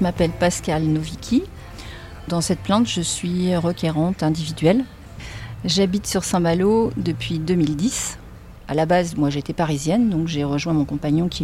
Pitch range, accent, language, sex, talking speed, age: 145-180 Hz, French, French, female, 145 wpm, 40-59